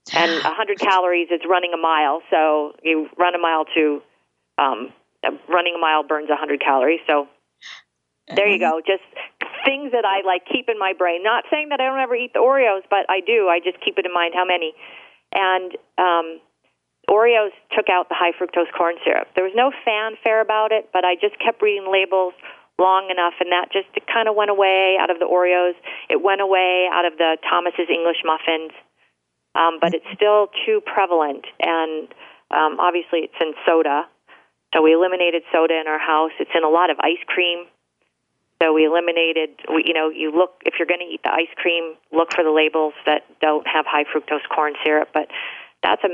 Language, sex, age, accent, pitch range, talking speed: English, female, 40-59, American, 160-195 Hz, 195 wpm